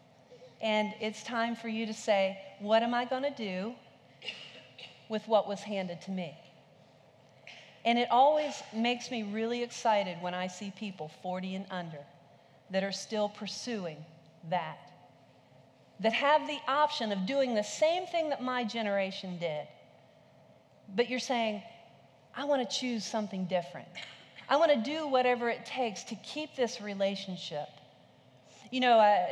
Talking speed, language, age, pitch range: 150 wpm, English, 40-59, 185-245 Hz